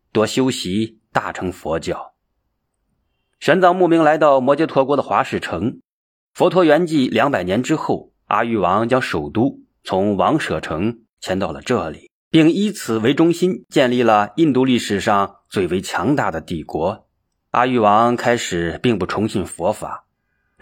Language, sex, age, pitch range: Chinese, male, 30-49, 105-145 Hz